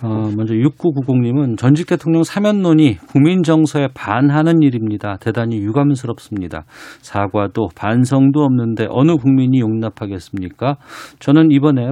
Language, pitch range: Korean, 110-145 Hz